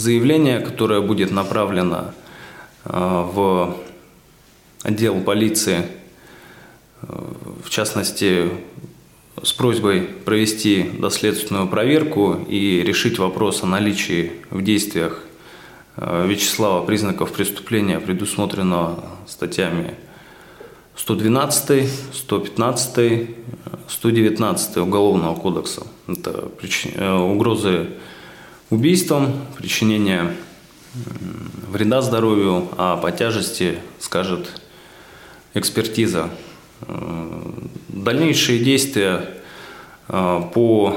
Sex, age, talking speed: male, 20-39, 75 wpm